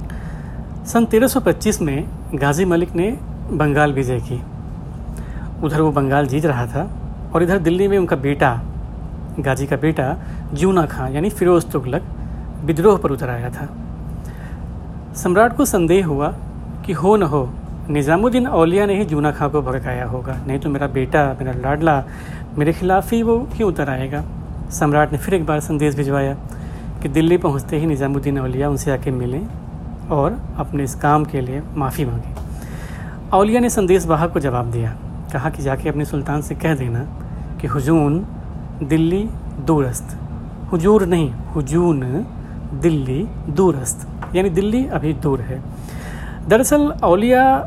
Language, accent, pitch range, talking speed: Hindi, native, 135-175 Hz, 150 wpm